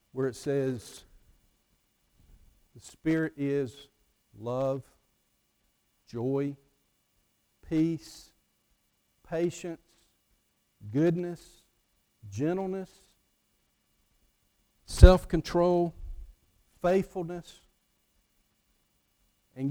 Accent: American